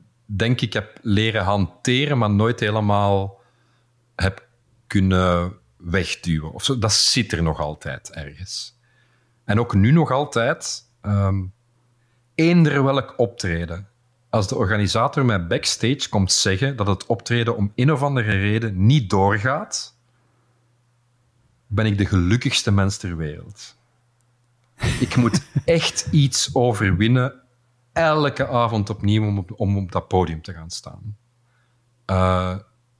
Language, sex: Dutch, male